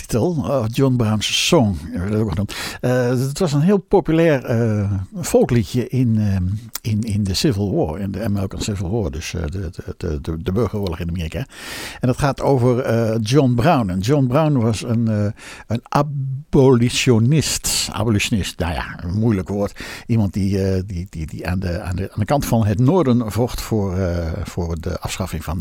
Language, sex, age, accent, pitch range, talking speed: Dutch, male, 60-79, Dutch, 95-125 Hz, 180 wpm